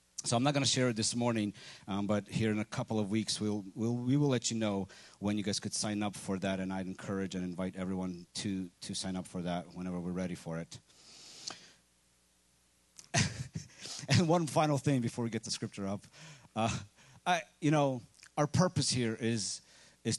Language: English